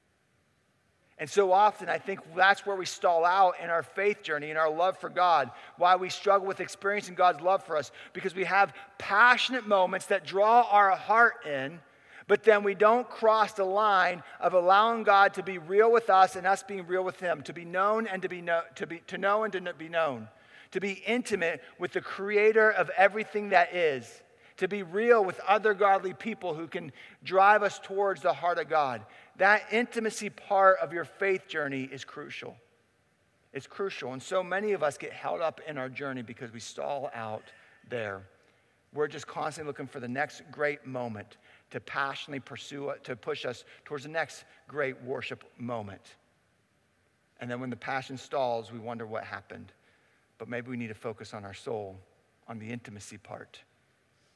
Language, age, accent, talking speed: English, 50-69, American, 190 wpm